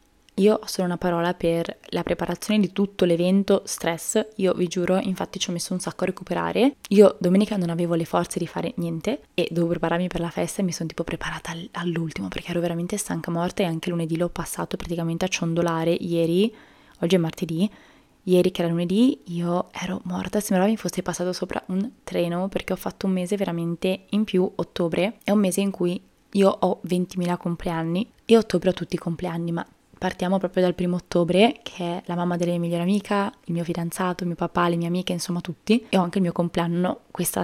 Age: 20-39